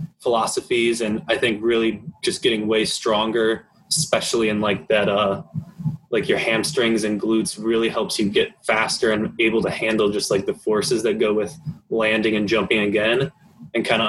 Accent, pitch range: American, 110-180 Hz